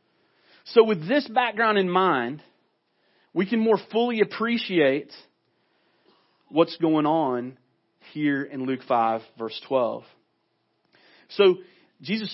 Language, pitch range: English, 125-195 Hz